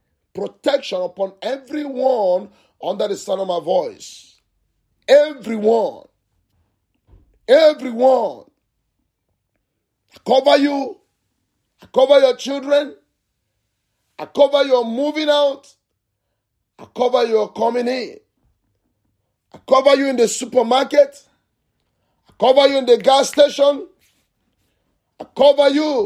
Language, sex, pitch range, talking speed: English, male, 190-285 Hz, 100 wpm